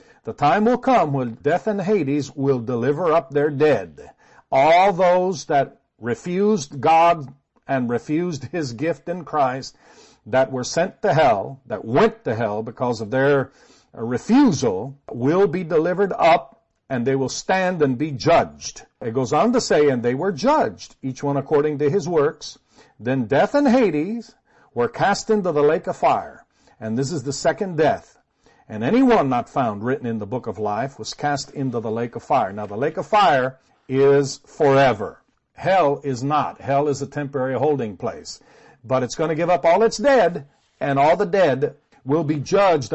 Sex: male